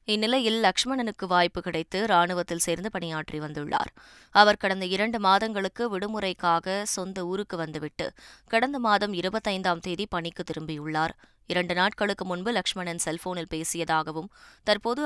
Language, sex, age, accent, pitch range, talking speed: Tamil, female, 20-39, native, 170-205 Hz, 115 wpm